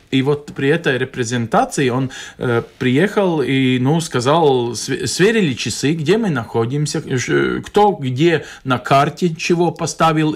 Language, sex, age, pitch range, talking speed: Russian, male, 40-59, 130-170 Hz, 130 wpm